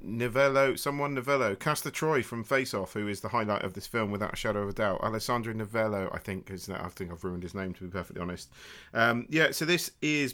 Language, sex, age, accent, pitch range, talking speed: English, male, 40-59, British, 90-105 Hz, 245 wpm